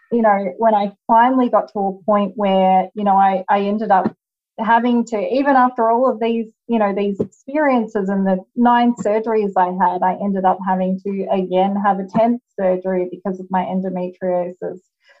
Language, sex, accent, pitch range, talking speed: English, female, Australian, 185-220 Hz, 185 wpm